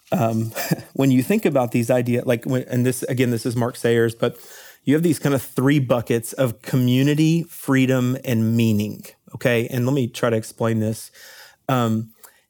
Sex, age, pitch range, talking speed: male, 30-49, 115-135 Hz, 180 wpm